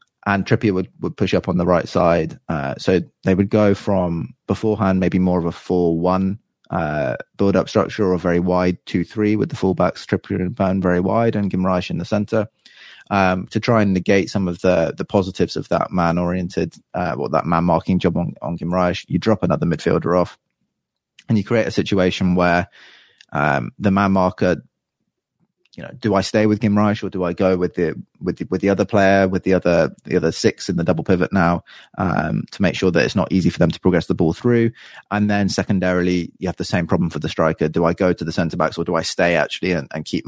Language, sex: English, male